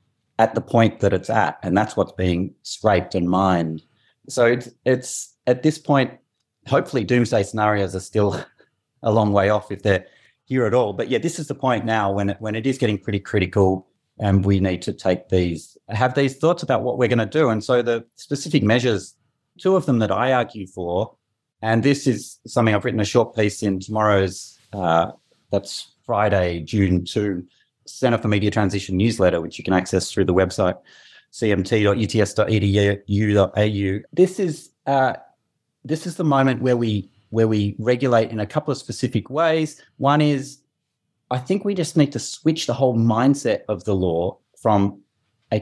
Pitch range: 100-130 Hz